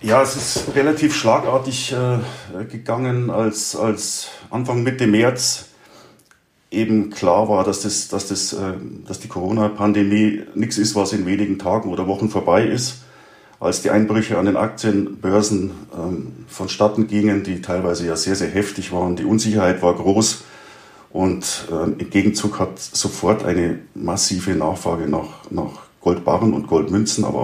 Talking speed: 140 wpm